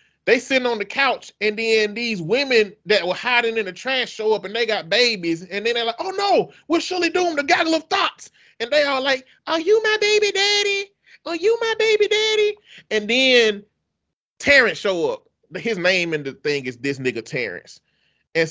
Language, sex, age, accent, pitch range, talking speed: English, male, 30-49, American, 195-295 Hz, 205 wpm